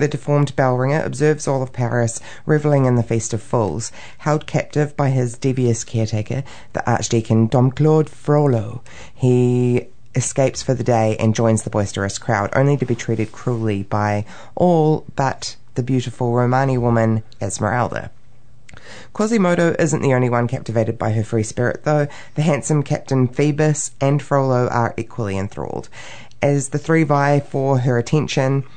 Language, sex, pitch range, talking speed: English, female, 110-140 Hz, 155 wpm